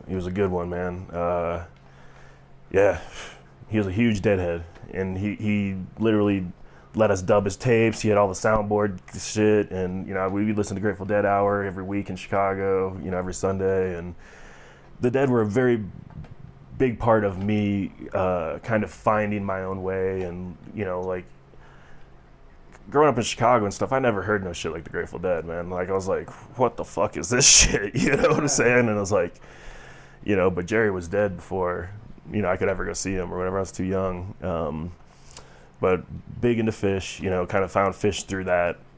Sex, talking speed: male, 210 wpm